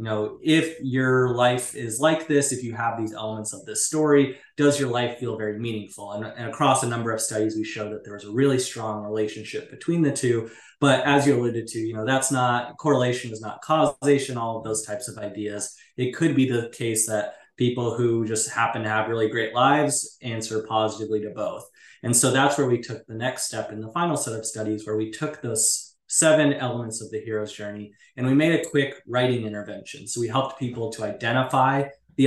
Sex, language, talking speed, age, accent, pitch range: male, English, 220 wpm, 20-39, American, 110-135 Hz